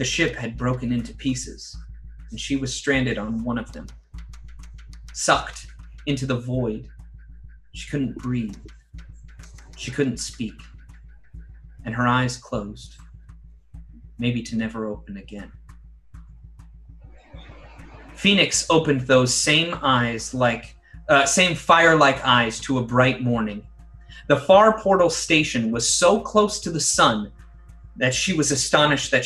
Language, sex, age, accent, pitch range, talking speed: English, male, 30-49, American, 115-155 Hz, 130 wpm